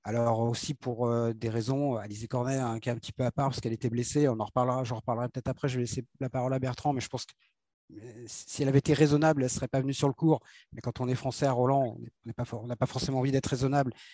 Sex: male